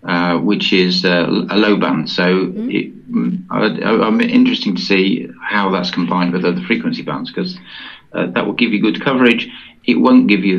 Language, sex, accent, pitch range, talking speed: English, male, British, 85-135 Hz, 195 wpm